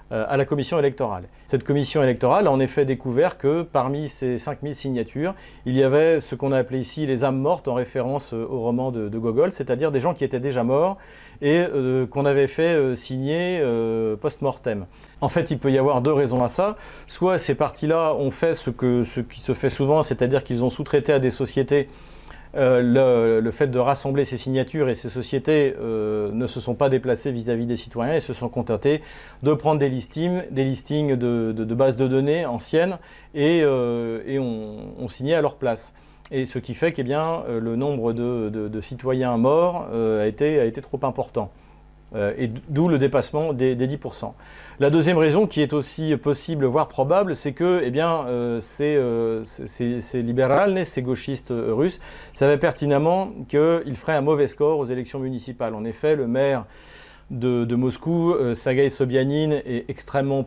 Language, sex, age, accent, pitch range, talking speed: French, male, 40-59, French, 120-150 Hz, 195 wpm